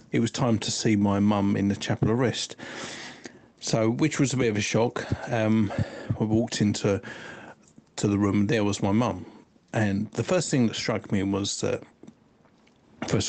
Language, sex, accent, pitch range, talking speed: English, male, British, 100-120 Hz, 190 wpm